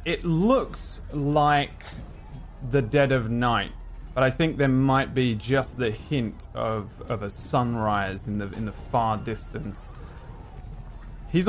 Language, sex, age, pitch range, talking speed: English, male, 20-39, 105-130 Hz, 140 wpm